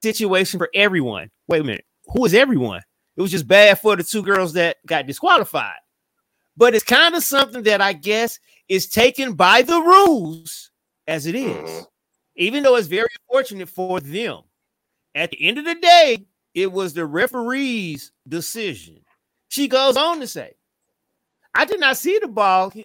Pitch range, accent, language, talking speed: 190-270 Hz, American, English, 170 wpm